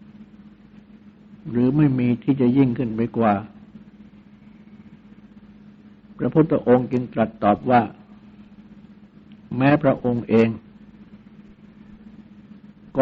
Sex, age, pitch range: male, 60-79, 130-210 Hz